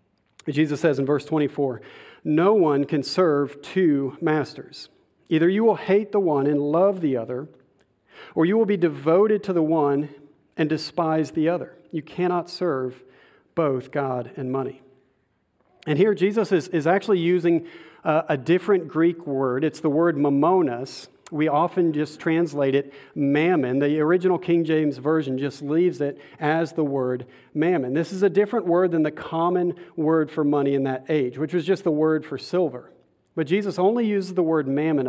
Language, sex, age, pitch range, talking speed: English, male, 40-59, 140-175 Hz, 175 wpm